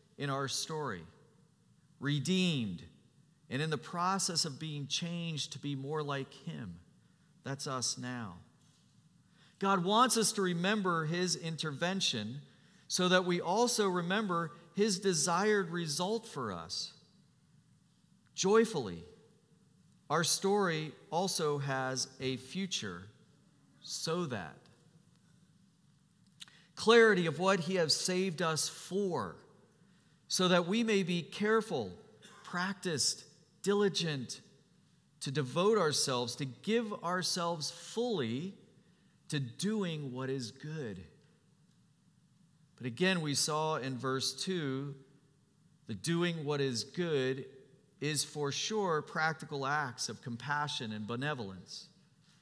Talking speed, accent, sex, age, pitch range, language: 110 wpm, American, male, 40-59, 140-180 Hz, English